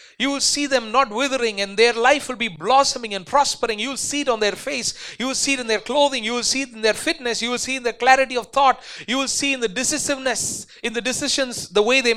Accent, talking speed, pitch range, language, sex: Indian, 280 wpm, 190-265 Hz, English, male